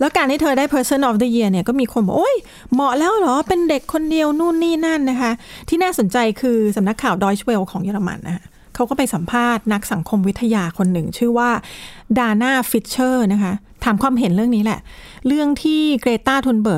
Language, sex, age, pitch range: Thai, female, 30-49, 210-265 Hz